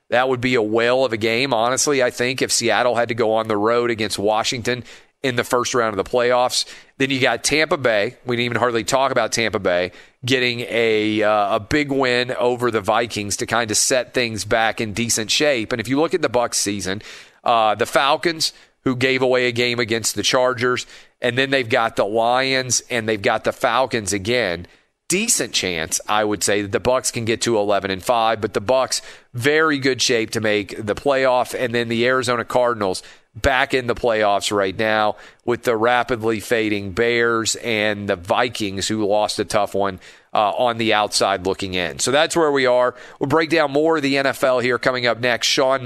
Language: English